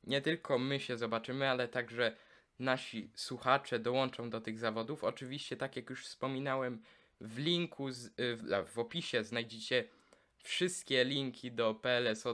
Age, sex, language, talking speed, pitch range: 20-39, male, Polish, 135 wpm, 115-135 Hz